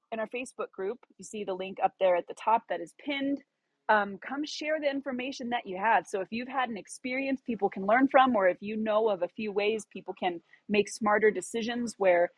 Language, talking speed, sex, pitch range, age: English, 235 wpm, female, 190-255 Hz, 30-49